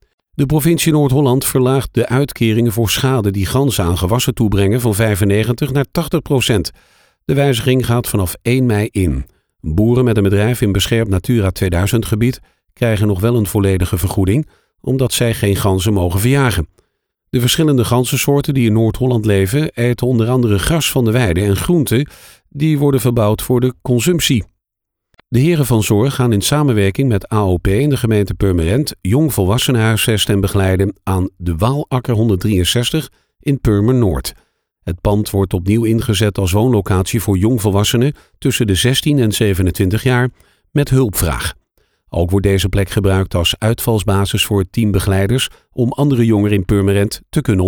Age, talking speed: 50-69, 155 wpm